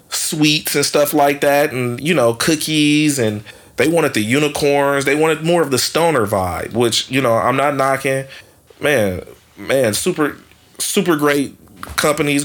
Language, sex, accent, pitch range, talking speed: English, male, American, 115-140 Hz, 160 wpm